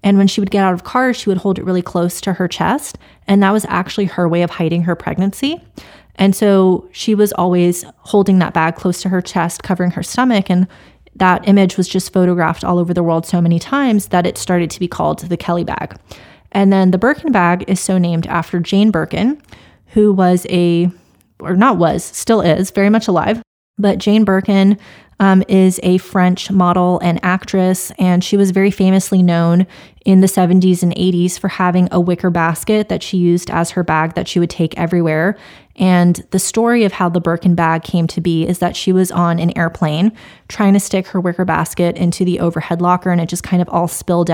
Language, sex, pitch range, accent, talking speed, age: English, female, 175-195 Hz, American, 215 wpm, 20-39